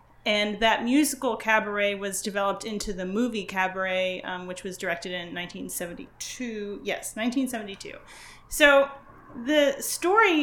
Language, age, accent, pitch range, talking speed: English, 30-49, American, 200-250 Hz, 120 wpm